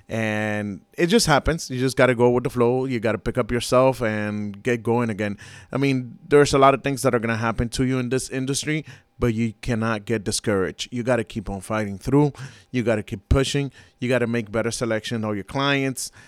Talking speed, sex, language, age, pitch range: 220 wpm, male, English, 30-49, 110-130 Hz